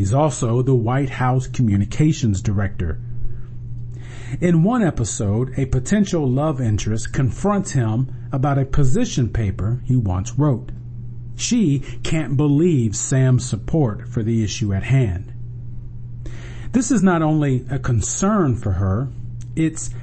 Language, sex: English, male